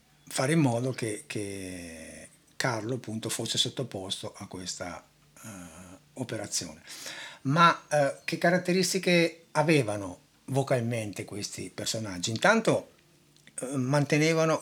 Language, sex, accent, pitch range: Italian, male, native, 110-150 Hz